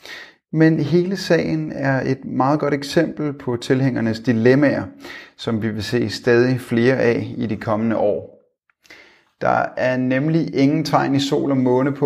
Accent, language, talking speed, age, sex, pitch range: native, Danish, 160 wpm, 30-49, male, 115-145 Hz